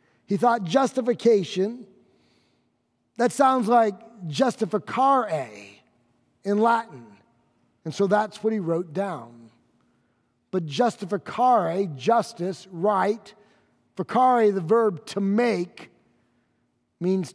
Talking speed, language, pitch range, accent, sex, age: 90 wpm, English, 165-230 Hz, American, male, 50-69